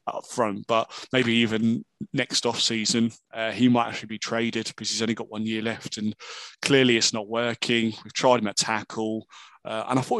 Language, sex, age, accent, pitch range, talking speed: English, male, 20-39, British, 110-130 Hz, 200 wpm